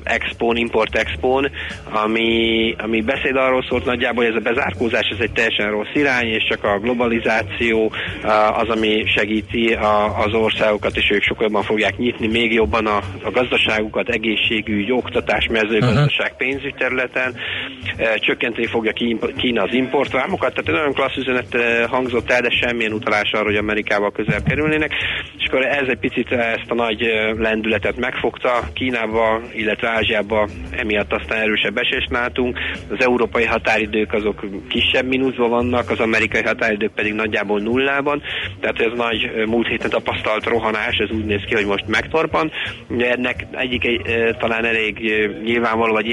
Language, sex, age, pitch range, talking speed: Hungarian, male, 30-49, 105-120 Hz, 145 wpm